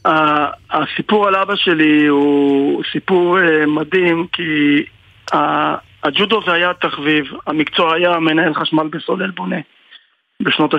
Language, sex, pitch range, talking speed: Hebrew, male, 150-180 Hz, 105 wpm